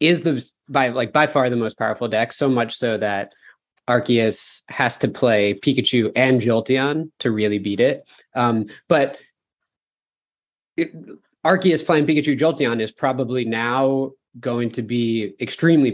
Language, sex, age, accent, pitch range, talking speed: English, male, 20-39, American, 115-145 Hz, 145 wpm